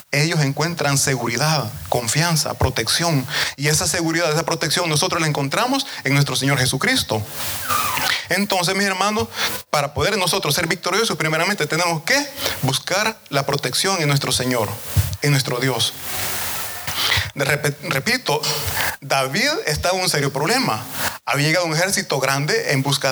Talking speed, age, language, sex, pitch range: 130 wpm, 30-49, Italian, male, 135-175 Hz